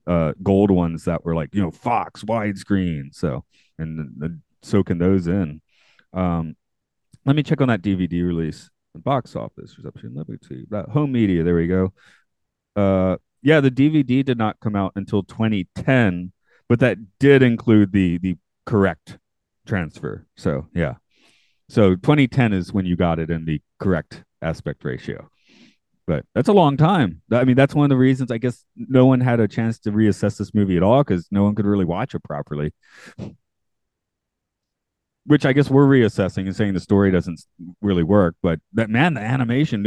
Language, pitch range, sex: English, 85-115 Hz, male